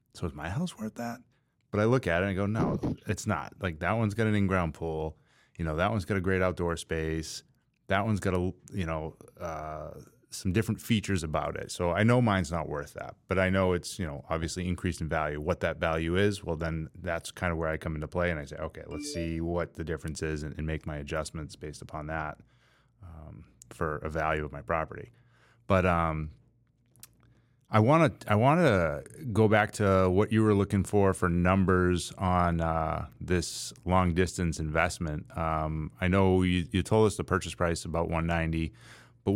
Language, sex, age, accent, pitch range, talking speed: English, male, 30-49, American, 80-105 Hz, 215 wpm